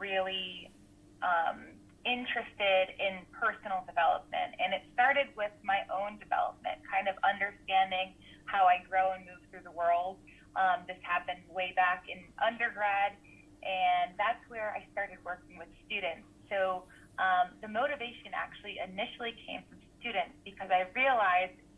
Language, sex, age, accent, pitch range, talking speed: English, female, 20-39, American, 185-225 Hz, 140 wpm